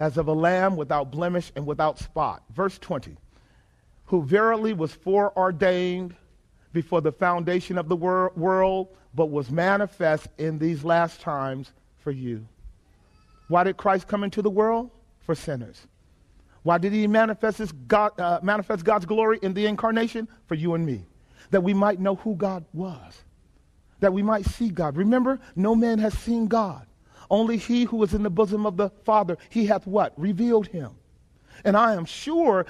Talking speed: 165 wpm